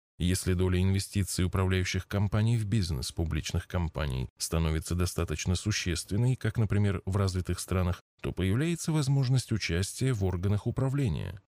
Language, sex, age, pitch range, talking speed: Russian, male, 20-39, 90-120 Hz, 125 wpm